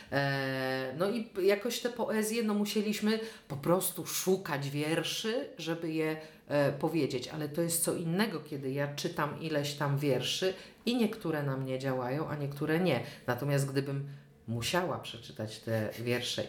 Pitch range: 145-230 Hz